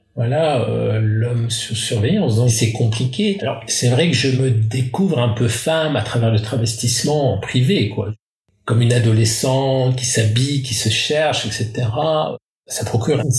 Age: 50-69